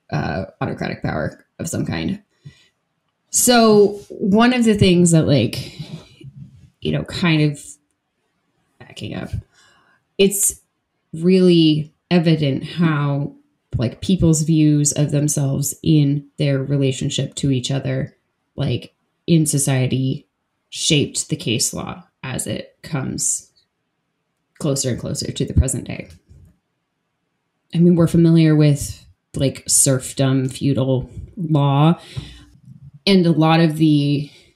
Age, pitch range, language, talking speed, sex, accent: 20-39, 140-170 Hz, English, 115 wpm, female, American